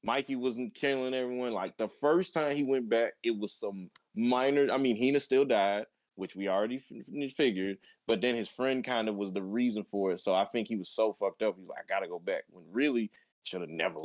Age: 20-39